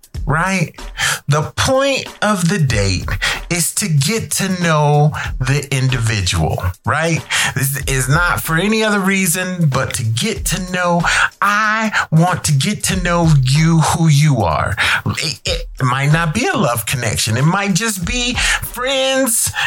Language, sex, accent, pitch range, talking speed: English, male, American, 115-175 Hz, 150 wpm